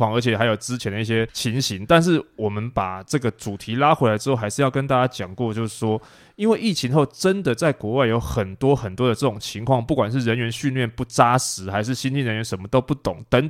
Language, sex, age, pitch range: Chinese, male, 20-39, 110-140 Hz